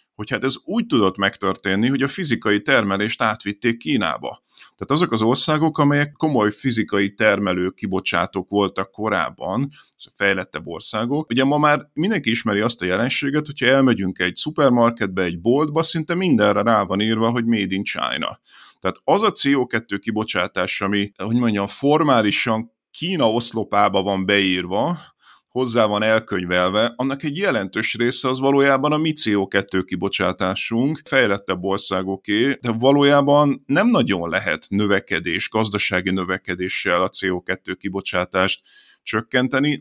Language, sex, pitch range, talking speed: Hungarian, male, 95-130 Hz, 135 wpm